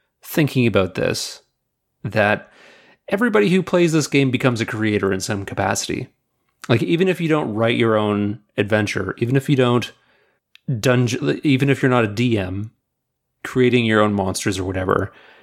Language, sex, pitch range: English, male, 105-135 Hz